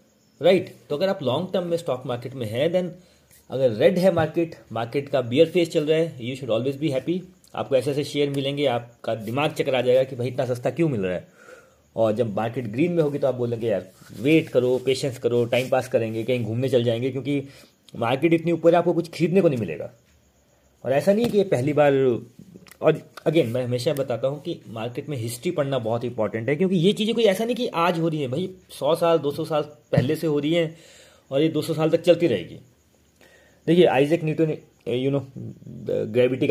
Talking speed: 220 wpm